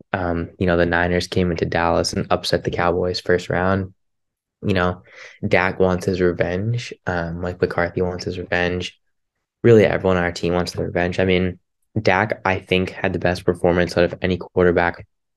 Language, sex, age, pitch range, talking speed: English, male, 10-29, 90-95 Hz, 185 wpm